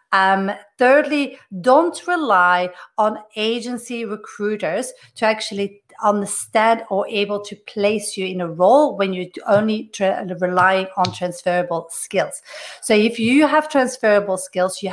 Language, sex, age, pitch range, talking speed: English, female, 40-59, 190-240 Hz, 135 wpm